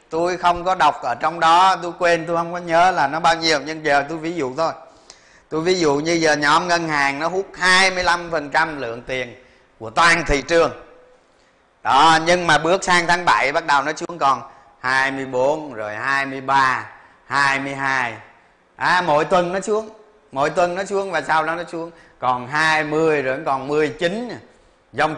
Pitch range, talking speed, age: 135-175 Hz, 185 wpm, 20-39